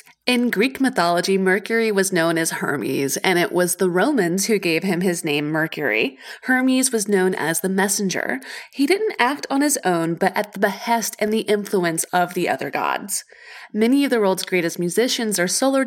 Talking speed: 190 wpm